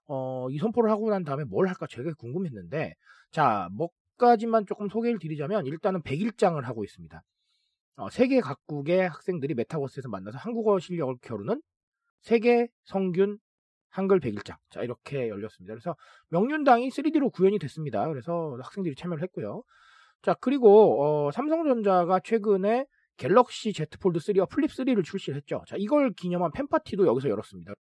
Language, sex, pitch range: Korean, male, 145-230 Hz